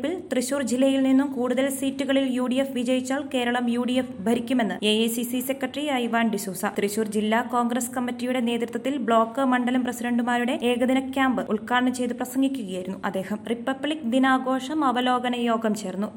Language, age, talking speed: Malayalam, 20-39, 105 wpm